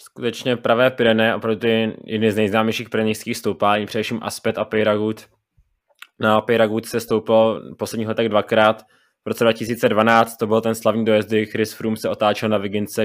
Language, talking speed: Czech, 165 wpm